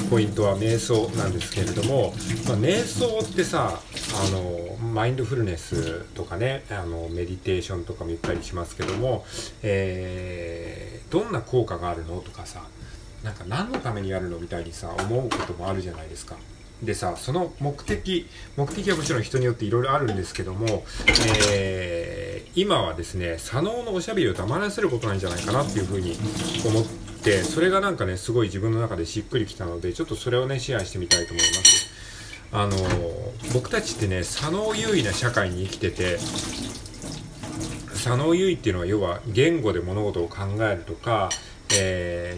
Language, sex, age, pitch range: Japanese, male, 40-59, 90-125 Hz